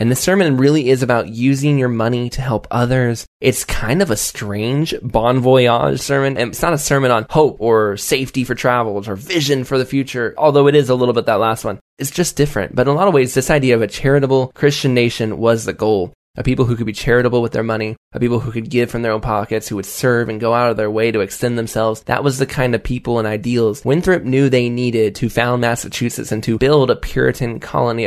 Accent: American